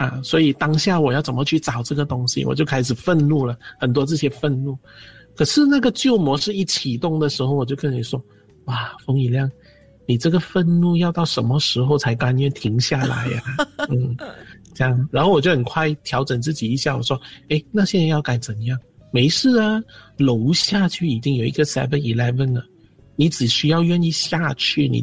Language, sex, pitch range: Chinese, male, 130-175 Hz